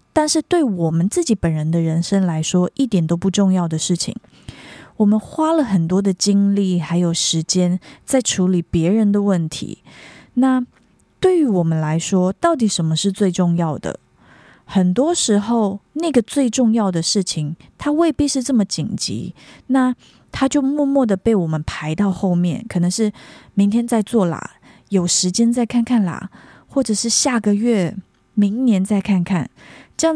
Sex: female